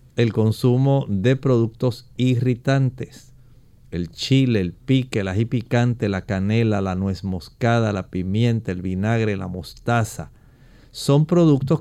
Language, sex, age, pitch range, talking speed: Spanish, male, 40-59, 110-130 Hz, 125 wpm